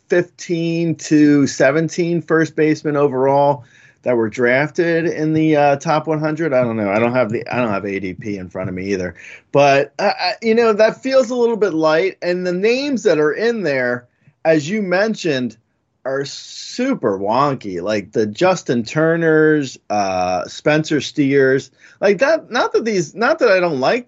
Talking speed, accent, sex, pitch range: 175 wpm, American, male, 125-180 Hz